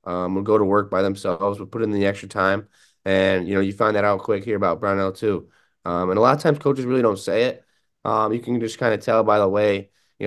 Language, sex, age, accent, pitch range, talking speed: English, male, 20-39, American, 95-110 Hz, 275 wpm